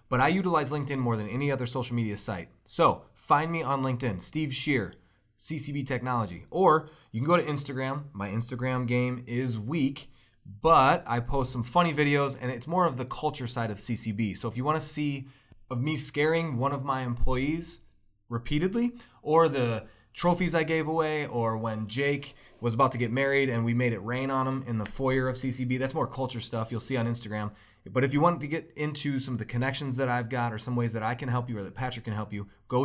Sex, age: male, 20-39